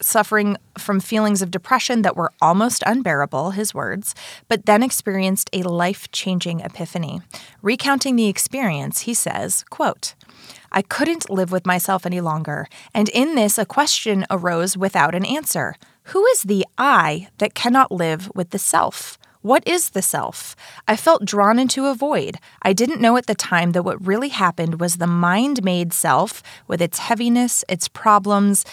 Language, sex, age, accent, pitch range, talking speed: English, female, 20-39, American, 180-230 Hz, 165 wpm